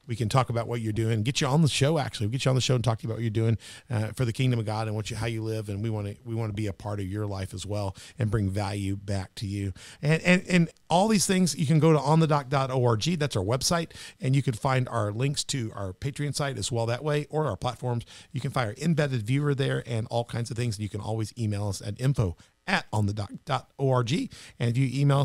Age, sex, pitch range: 40-59, male, 110-150 Hz